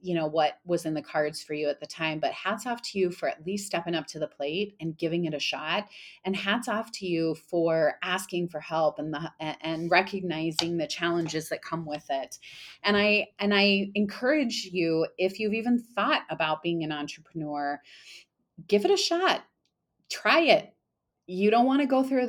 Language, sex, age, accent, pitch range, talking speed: English, female, 30-49, American, 155-195 Hz, 200 wpm